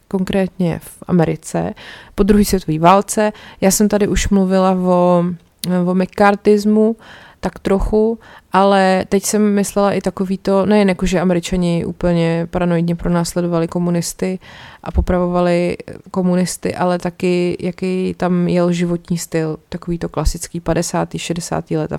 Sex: female